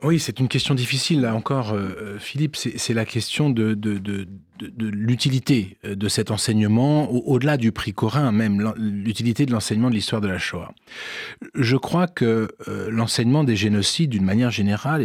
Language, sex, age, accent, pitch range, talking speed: French, male, 40-59, French, 105-140 Hz, 165 wpm